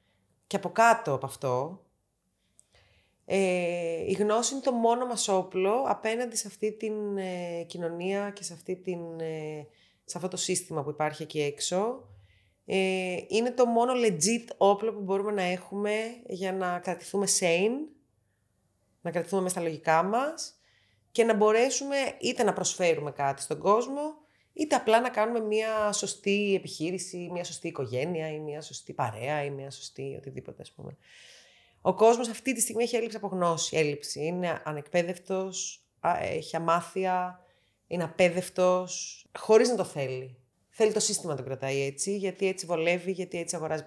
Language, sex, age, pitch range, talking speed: Greek, female, 30-49, 155-210 Hz, 150 wpm